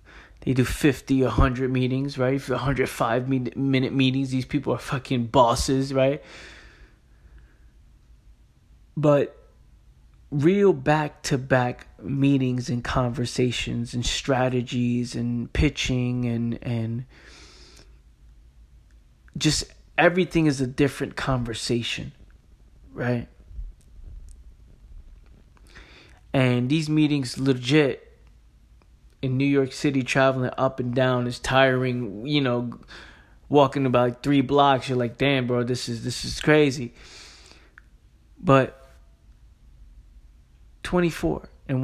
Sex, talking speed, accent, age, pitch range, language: male, 105 wpm, American, 20-39, 95-135 Hz, English